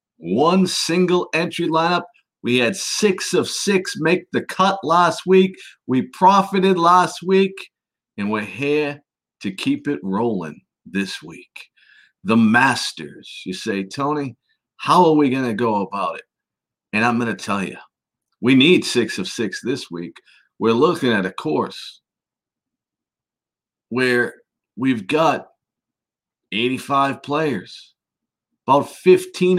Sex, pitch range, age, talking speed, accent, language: male, 125-180 Hz, 50-69, 130 wpm, American, English